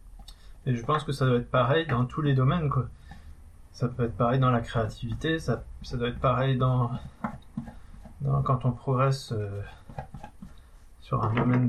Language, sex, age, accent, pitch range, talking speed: French, male, 20-39, French, 120-140 Hz, 175 wpm